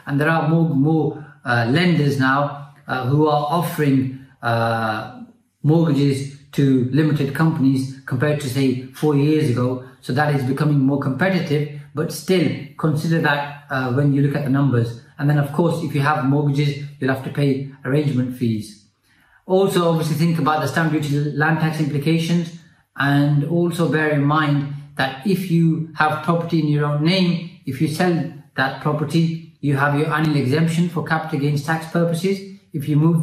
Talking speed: 175 wpm